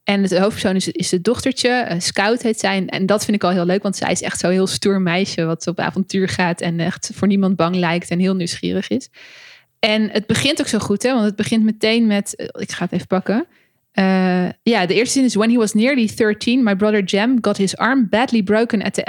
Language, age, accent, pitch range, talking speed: Dutch, 20-39, Dutch, 185-220 Hz, 240 wpm